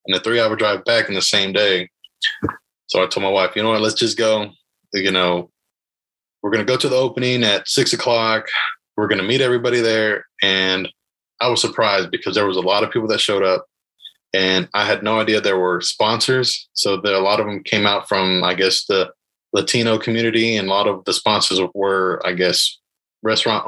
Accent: American